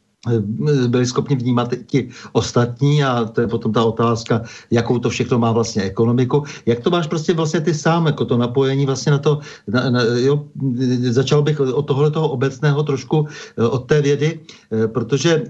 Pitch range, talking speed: 120-145 Hz, 165 wpm